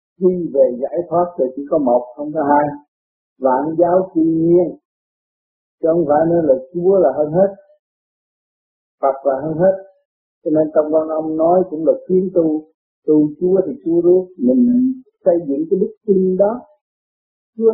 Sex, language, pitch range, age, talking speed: male, Vietnamese, 150-195 Hz, 50-69, 170 wpm